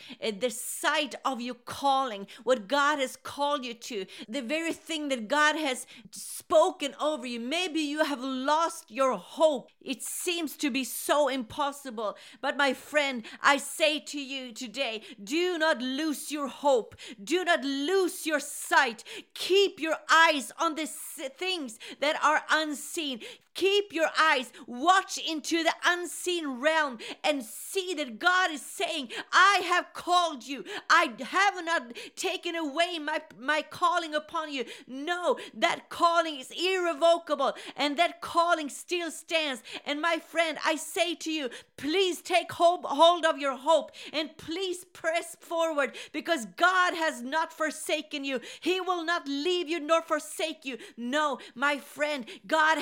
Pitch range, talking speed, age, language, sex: 275-335 Hz, 150 wpm, 40-59, English, female